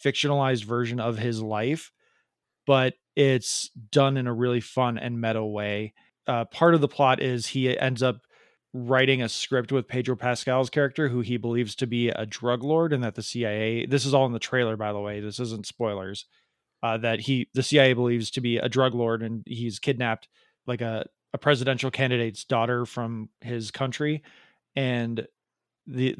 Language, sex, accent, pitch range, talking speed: English, male, American, 115-135 Hz, 185 wpm